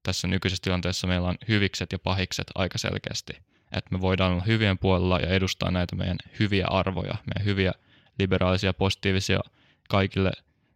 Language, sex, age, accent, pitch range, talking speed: Finnish, male, 10-29, native, 95-105 Hz, 150 wpm